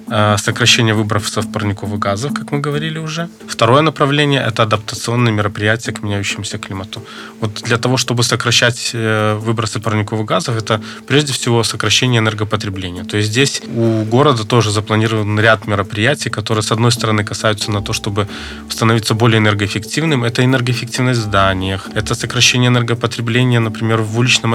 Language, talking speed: Russian, 145 wpm